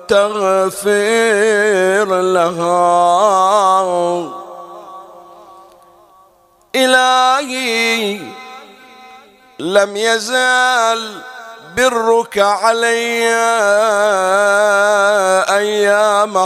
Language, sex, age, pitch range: Arabic, male, 50-69, 185-225 Hz